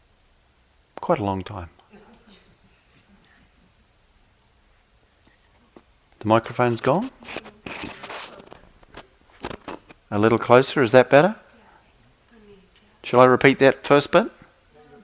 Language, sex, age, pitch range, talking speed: English, male, 40-59, 90-115 Hz, 75 wpm